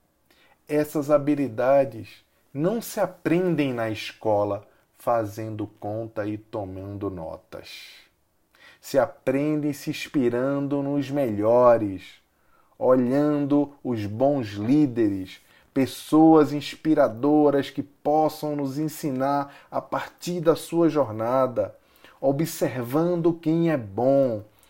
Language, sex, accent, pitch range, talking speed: Portuguese, male, Brazilian, 120-190 Hz, 90 wpm